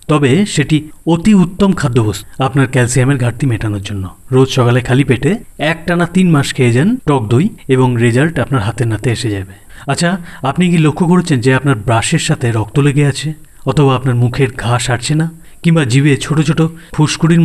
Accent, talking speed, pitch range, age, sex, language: native, 180 wpm, 125-155 Hz, 30-49, male, Bengali